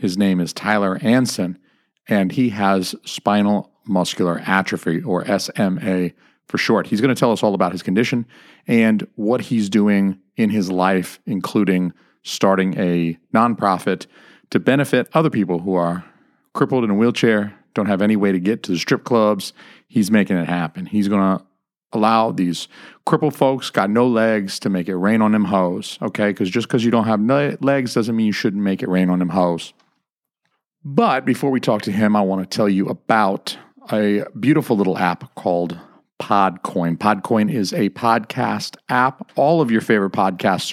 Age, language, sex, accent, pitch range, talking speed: 40-59, English, male, American, 95-115 Hz, 180 wpm